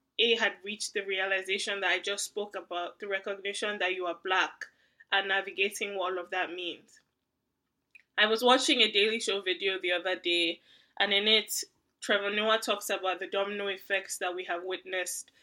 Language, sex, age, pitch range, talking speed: English, female, 10-29, 185-220 Hz, 185 wpm